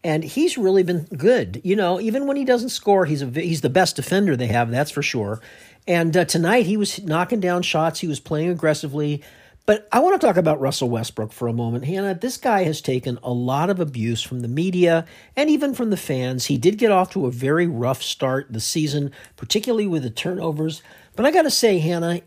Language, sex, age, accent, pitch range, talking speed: English, male, 50-69, American, 140-195 Hz, 225 wpm